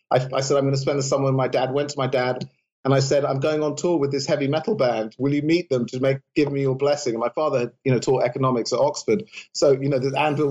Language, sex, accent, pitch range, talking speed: English, male, British, 125-150 Hz, 305 wpm